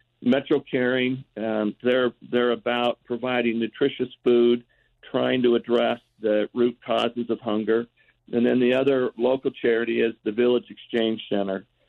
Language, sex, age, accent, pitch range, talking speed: English, male, 50-69, American, 110-125 Hz, 140 wpm